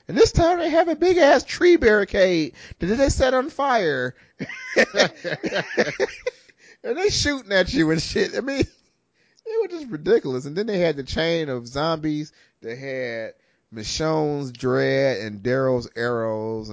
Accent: American